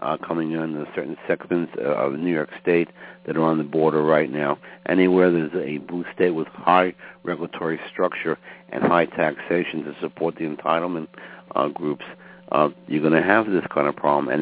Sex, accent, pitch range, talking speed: male, American, 80-95 Hz, 185 wpm